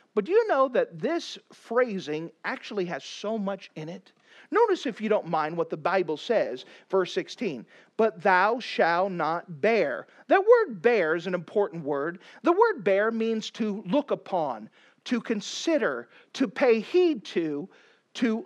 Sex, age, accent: male, 40-59, American